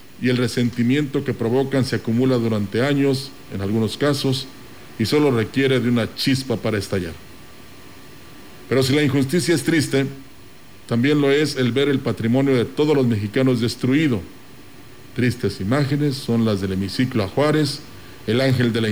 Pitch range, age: 110-135 Hz, 50-69